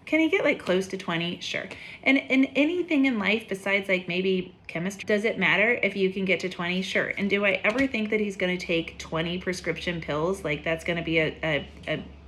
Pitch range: 180-250 Hz